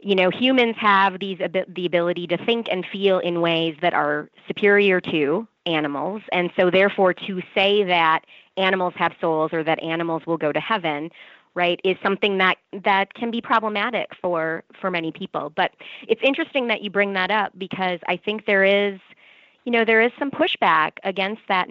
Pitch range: 170-200 Hz